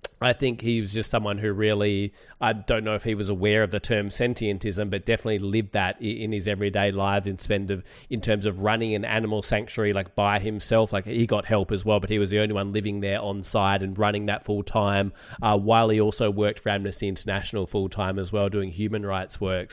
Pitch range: 100-110 Hz